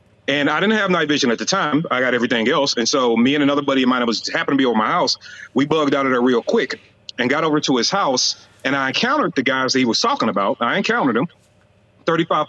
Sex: male